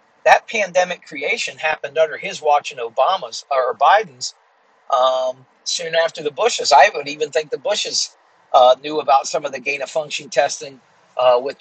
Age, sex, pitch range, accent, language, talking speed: 50-69, male, 140-180 Hz, American, English, 170 wpm